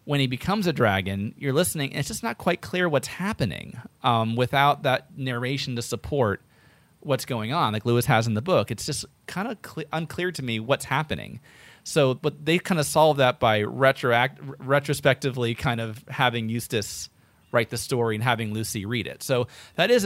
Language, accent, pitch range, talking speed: English, American, 115-145 Hz, 195 wpm